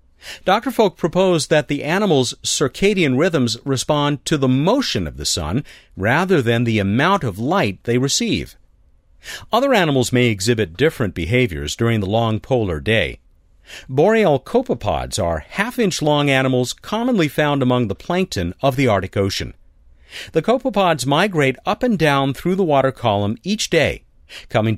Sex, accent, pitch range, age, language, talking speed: male, American, 100-160 Hz, 50-69, English, 150 wpm